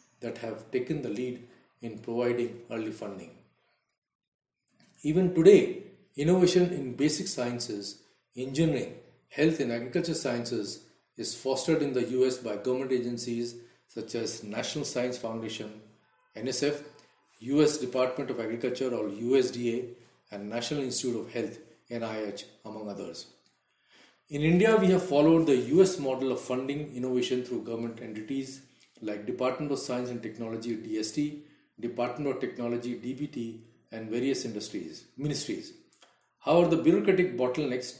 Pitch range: 120-145 Hz